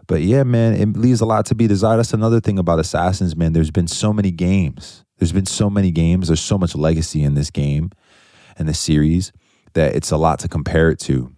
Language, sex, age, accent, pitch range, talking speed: English, male, 20-39, American, 75-90 Hz, 230 wpm